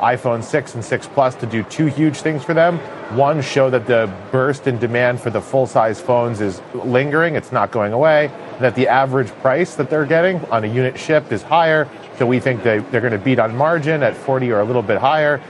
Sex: male